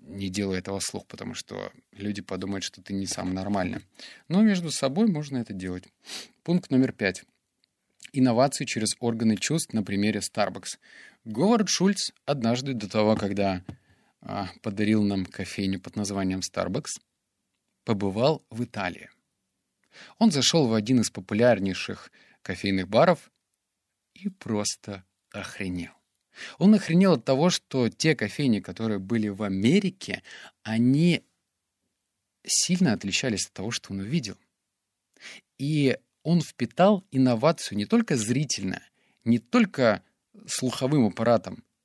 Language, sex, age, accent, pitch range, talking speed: Russian, male, 30-49, native, 100-140 Hz, 120 wpm